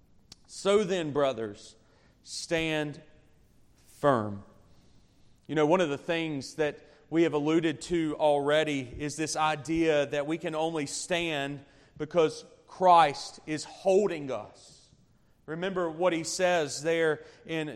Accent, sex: American, male